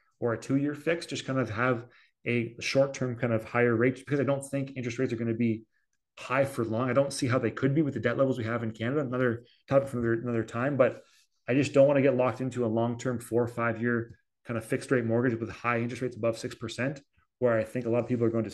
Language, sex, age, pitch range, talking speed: English, male, 30-49, 115-140 Hz, 270 wpm